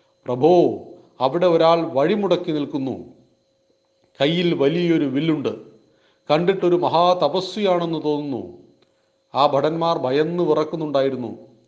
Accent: native